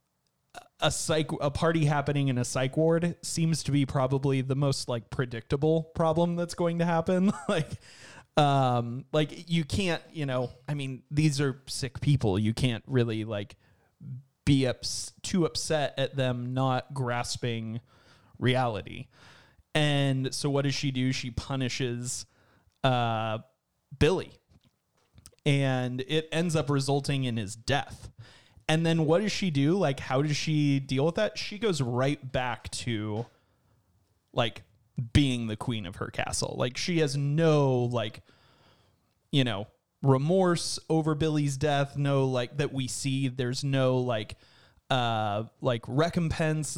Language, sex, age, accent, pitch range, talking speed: English, male, 30-49, American, 120-145 Hz, 145 wpm